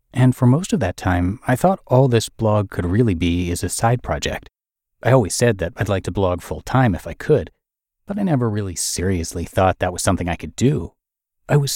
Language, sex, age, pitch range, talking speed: English, male, 30-49, 90-130 Hz, 225 wpm